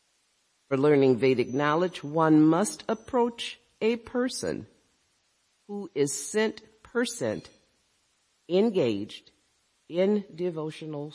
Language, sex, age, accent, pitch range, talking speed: English, female, 50-69, American, 140-215 Hz, 85 wpm